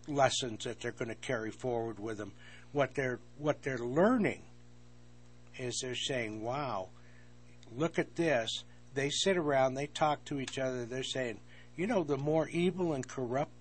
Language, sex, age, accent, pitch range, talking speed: English, male, 60-79, American, 115-140 Hz, 170 wpm